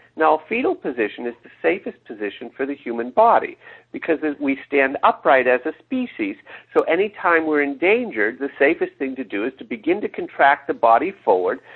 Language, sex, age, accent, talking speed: English, male, 50-69, American, 180 wpm